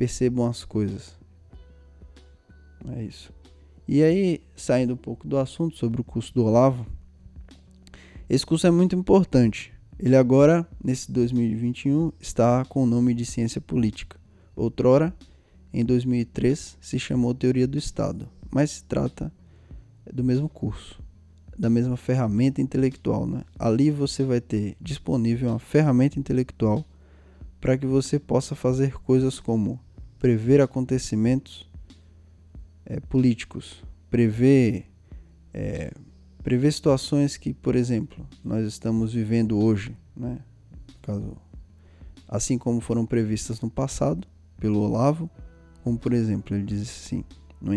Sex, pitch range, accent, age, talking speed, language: male, 90-130 Hz, Brazilian, 10-29, 125 wpm, Portuguese